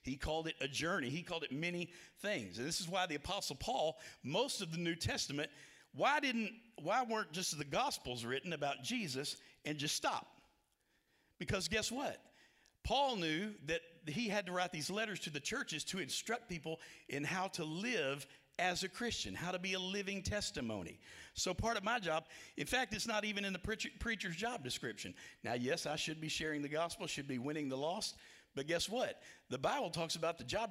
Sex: male